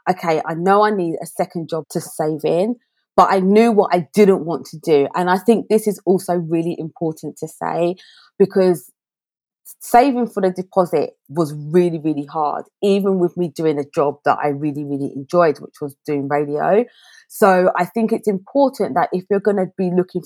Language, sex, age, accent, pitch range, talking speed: English, female, 30-49, British, 165-210 Hz, 195 wpm